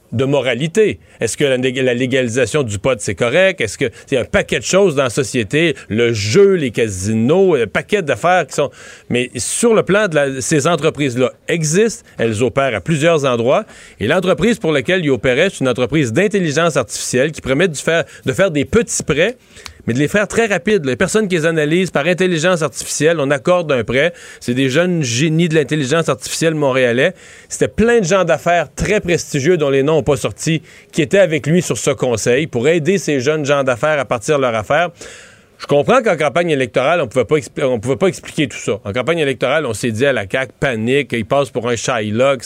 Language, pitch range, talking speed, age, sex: French, 130-175 Hz, 210 wpm, 40-59, male